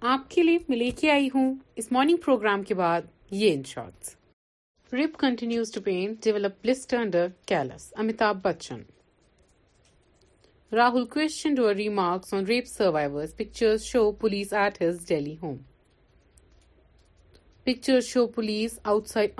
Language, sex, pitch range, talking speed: Urdu, female, 185-250 Hz, 100 wpm